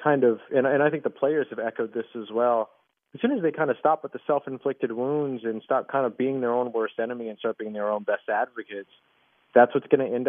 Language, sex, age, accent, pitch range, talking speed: English, male, 30-49, American, 110-135 Hz, 255 wpm